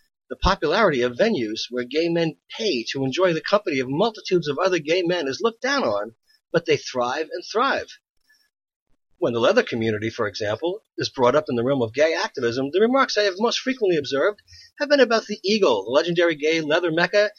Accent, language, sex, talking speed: American, English, male, 205 wpm